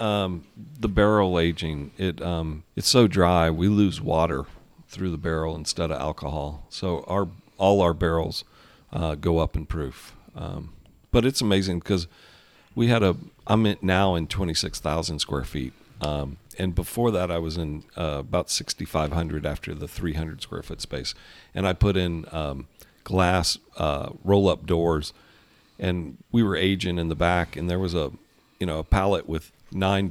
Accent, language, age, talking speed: American, English, 50-69, 180 wpm